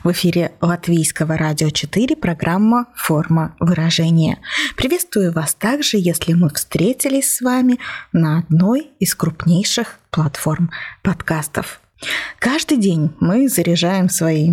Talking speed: 110 wpm